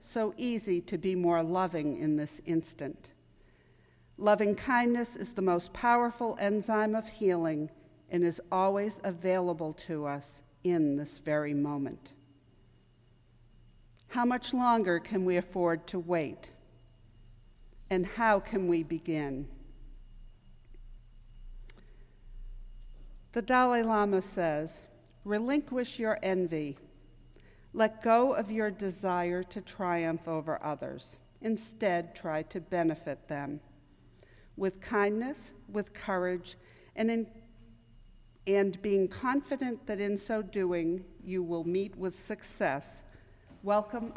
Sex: female